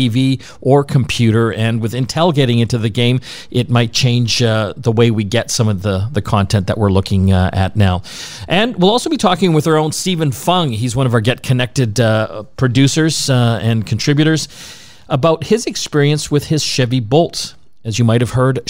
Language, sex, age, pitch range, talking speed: English, male, 40-59, 110-140 Hz, 200 wpm